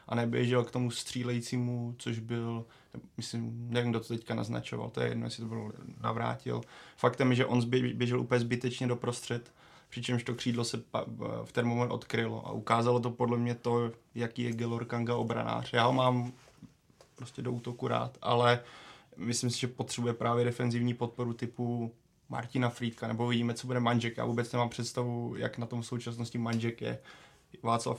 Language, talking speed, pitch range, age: Czech, 175 wpm, 115-120 Hz, 20-39